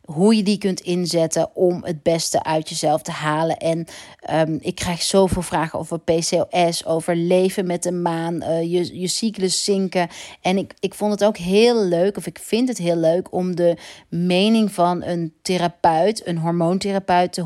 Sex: female